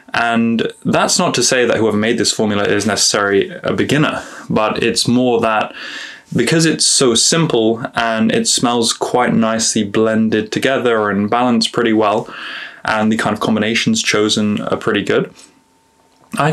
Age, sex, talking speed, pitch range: 20-39, male, 155 wpm, 110-135 Hz